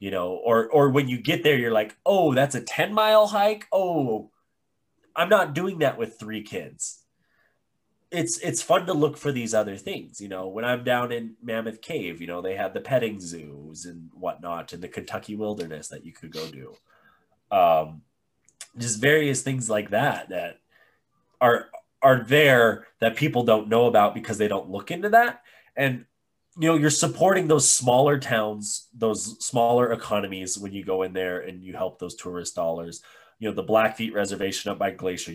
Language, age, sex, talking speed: English, 20-39, male, 185 wpm